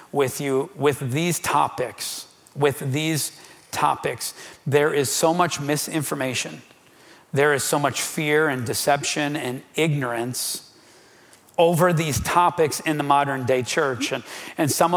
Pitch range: 140-165 Hz